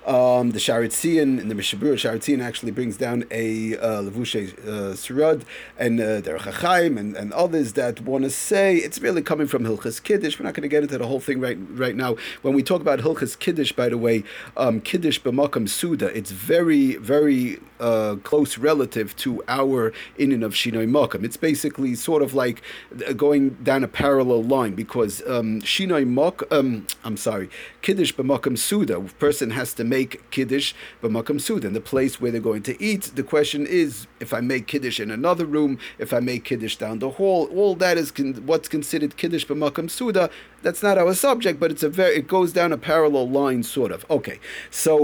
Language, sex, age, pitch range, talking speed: English, male, 30-49, 125-160 Hz, 200 wpm